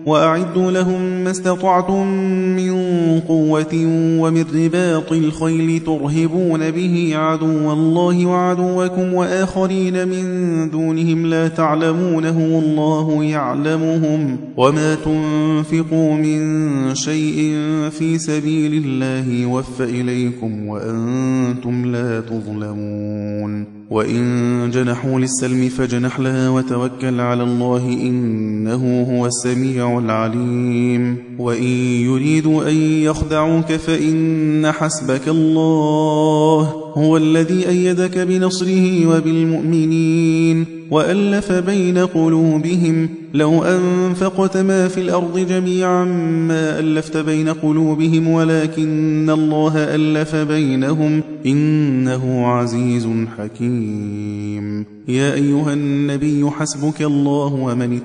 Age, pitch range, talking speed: 20-39, 130-165 Hz, 85 wpm